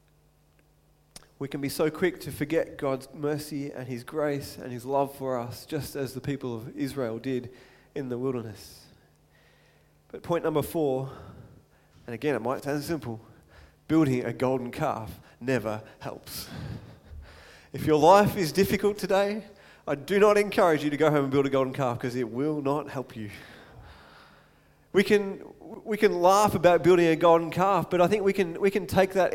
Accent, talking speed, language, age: Australian, 180 wpm, English, 30-49